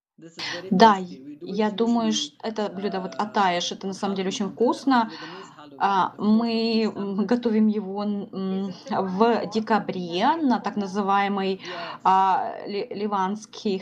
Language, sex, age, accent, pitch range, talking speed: Russian, female, 20-39, native, 200-240 Hz, 105 wpm